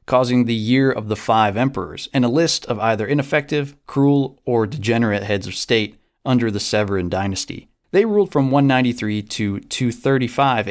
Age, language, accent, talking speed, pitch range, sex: 30-49, English, American, 160 wpm, 105-135 Hz, male